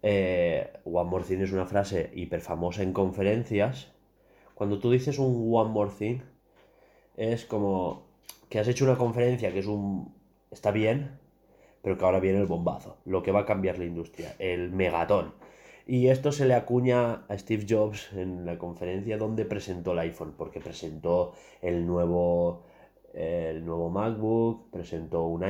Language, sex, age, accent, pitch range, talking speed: Spanish, male, 20-39, Spanish, 95-125 Hz, 160 wpm